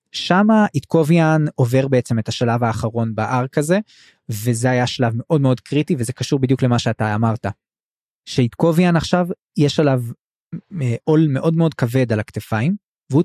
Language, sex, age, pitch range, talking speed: Hebrew, male, 20-39, 120-155 Hz, 150 wpm